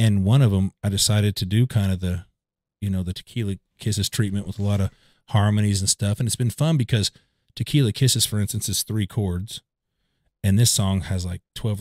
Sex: male